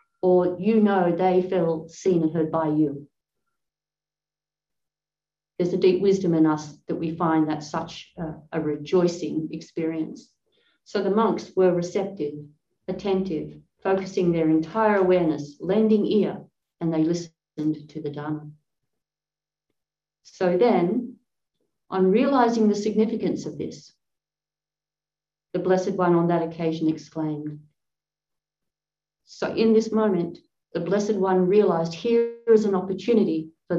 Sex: female